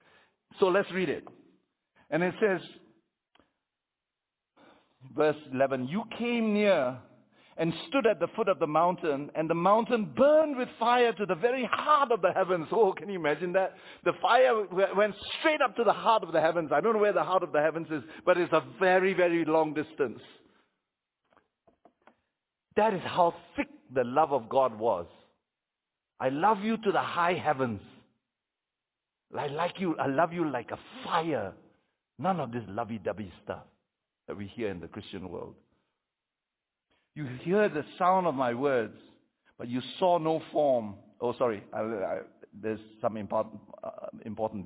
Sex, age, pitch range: male, 60-79, 145-195 Hz